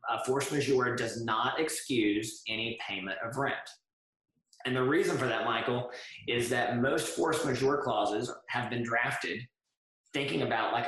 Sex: male